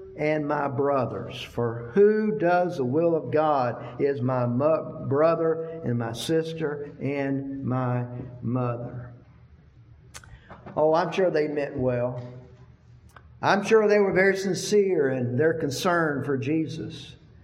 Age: 50-69